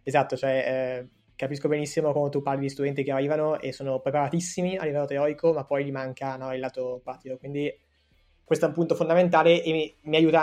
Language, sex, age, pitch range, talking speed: Italian, male, 20-39, 130-145 Hz, 205 wpm